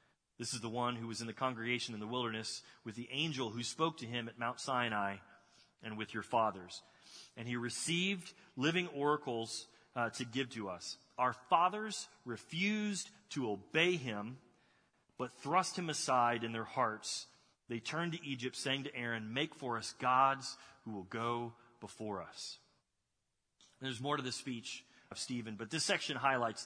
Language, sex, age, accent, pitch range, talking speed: English, male, 30-49, American, 115-150 Hz, 170 wpm